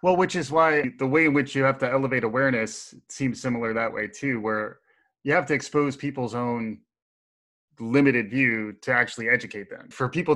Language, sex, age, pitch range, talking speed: English, male, 20-39, 115-140 Hz, 190 wpm